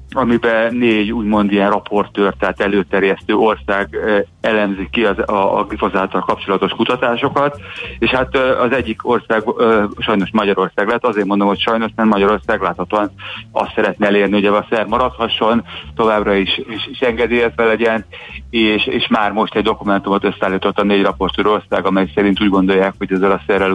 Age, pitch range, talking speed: 30-49, 100-115 Hz, 165 wpm